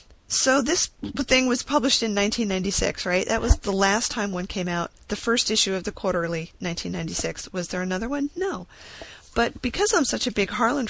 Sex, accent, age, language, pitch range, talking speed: female, American, 30-49, English, 180-230 Hz, 195 wpm